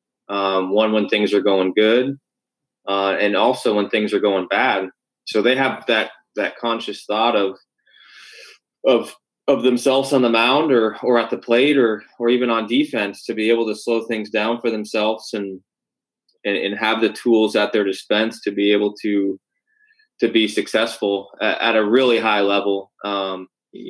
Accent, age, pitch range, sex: American, 20-39, 100-115 Hz, male